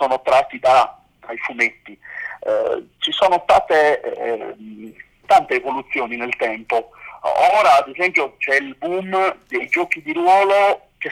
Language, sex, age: Italian, male, 40-59